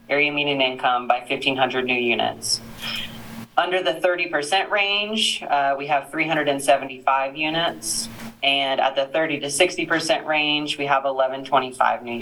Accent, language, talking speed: American, English, 140 wpm